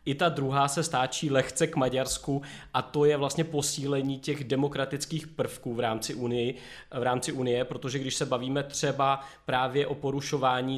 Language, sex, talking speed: Czech, male, 155 wpm